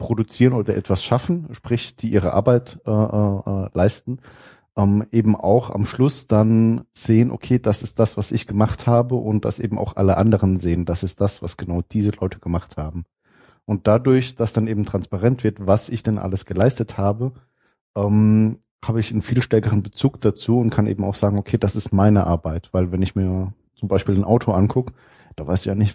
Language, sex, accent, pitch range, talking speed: German, male, German, 95-115 Hz, 200 wpm